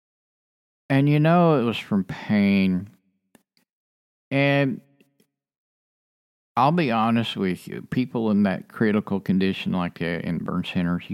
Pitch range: 100-165 Hz